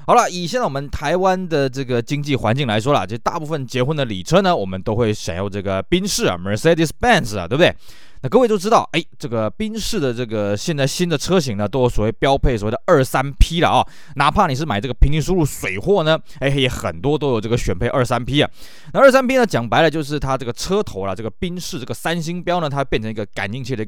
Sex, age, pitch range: male, 20-39, 120-185 Hz